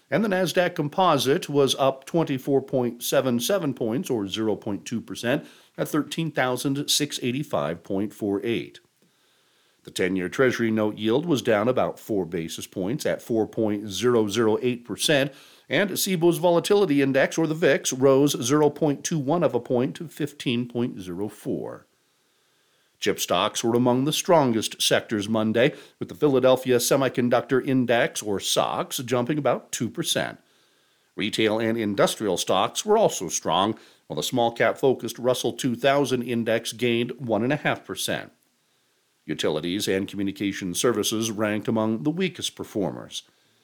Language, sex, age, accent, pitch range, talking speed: English, male, 50-69, American, 115-155 Hz, 115 wpm